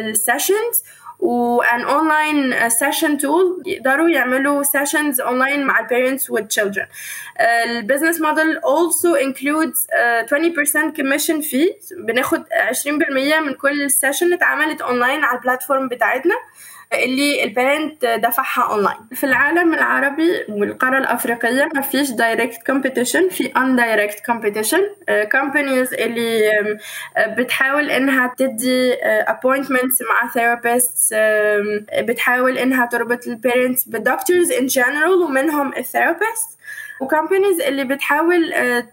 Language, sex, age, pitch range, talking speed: Arabic, female, 10-29, 240-305 Hz, 90 wpm